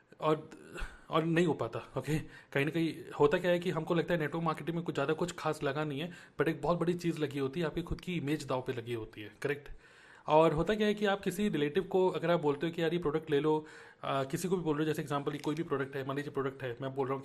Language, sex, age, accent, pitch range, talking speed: Hindi, male, 30-49, native, 140-175 Hz, 290 wpm